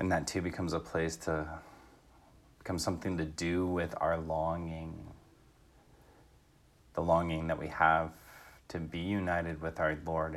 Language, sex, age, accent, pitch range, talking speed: English, male, 30-49, American, 80-90 Hz, 145 wpm